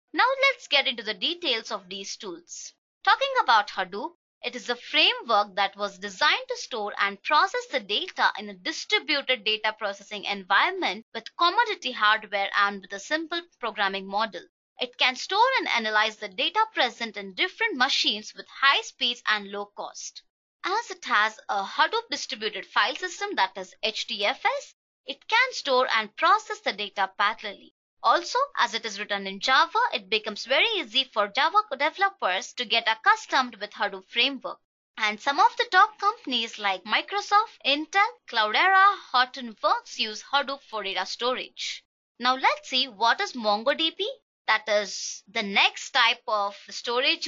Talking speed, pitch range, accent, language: 160 wpm, 210-330 Hz, Indian, English